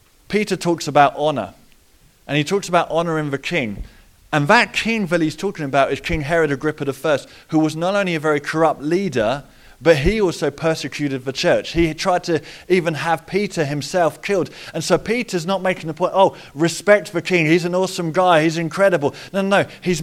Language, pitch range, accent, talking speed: English, 145-180 Hz, British, 200 wpm